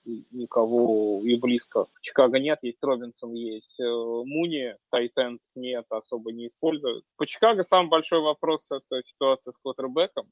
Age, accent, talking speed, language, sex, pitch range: 20-39, native, 140 wpm, Russian, male, 115-140 Hz